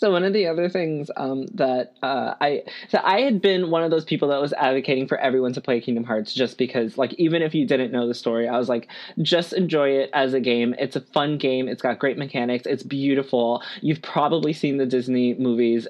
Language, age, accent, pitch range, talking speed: English, 20-39, American, 125-155 Hz, 235 wpm